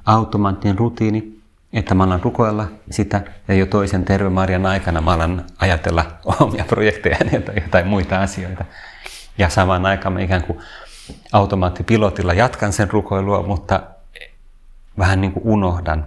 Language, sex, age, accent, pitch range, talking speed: Finnish, male, 30-49, native, 85-100 Hz, 130 wpm